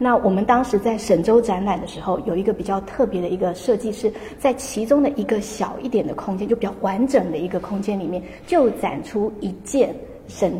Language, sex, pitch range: Chinese, female, 195-240 Hz